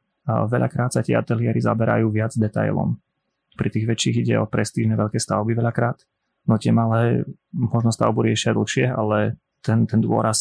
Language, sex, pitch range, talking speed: Slovak, male, 110-120 Hz, 155 wpm